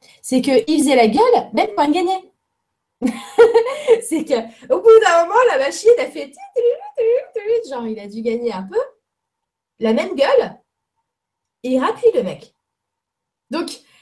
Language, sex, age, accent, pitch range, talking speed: French, female, 20-39, French, 210-315 Hz, 135 wpm